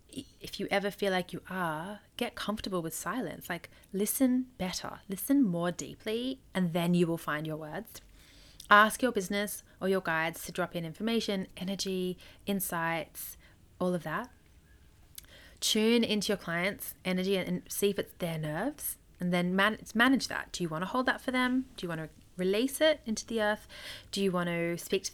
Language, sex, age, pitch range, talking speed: English, female, 30-49, 175-220 Hz, 185 wpm